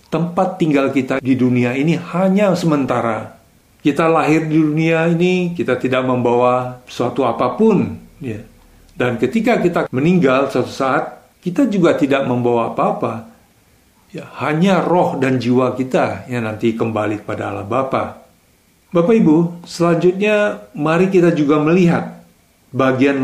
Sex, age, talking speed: male, 50-69, 130 wpm